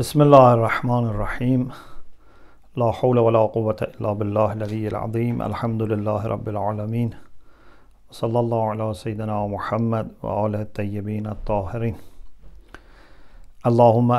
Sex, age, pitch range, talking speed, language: male, 50-69, 105-125 Hz, 105 wpm, English